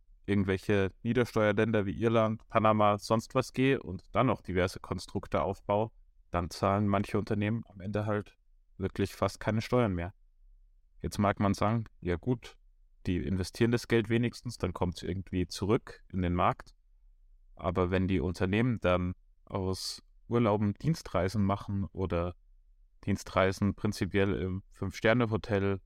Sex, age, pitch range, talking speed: male, 30-49, 90-105 Hz, 135 wpm